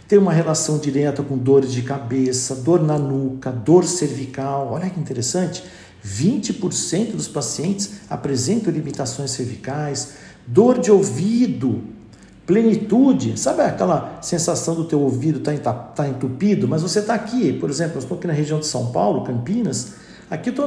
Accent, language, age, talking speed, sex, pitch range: Brazilian, Portuguese, 50-69, 145 wpm, male, 135-200 Hz